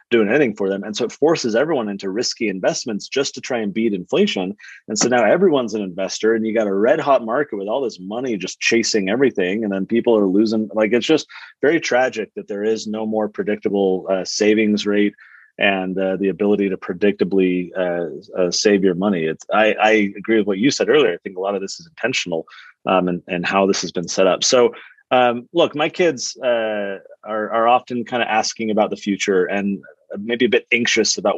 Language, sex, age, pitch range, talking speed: English, male, 30-49, 100-115 Hz, 215 wpm